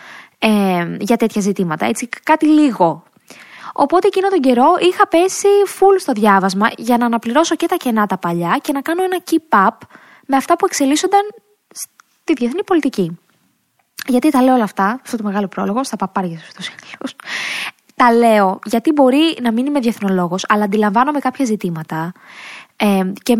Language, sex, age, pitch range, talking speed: Greek, female, 20-39, 210-300 Hz, 160 wpm